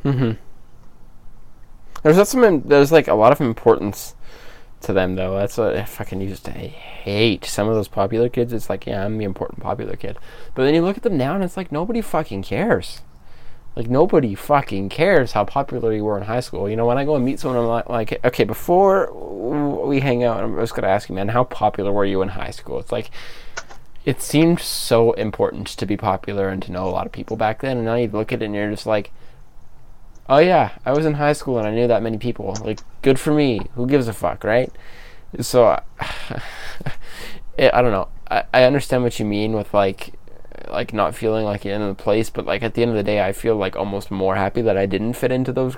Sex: male